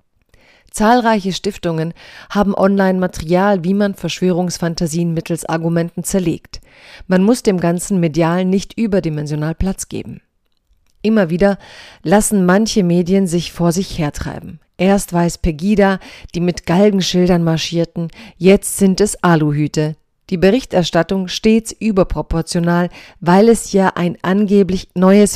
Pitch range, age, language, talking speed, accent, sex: 170-195 Hz, 40-59, German, 115 wpm, German, female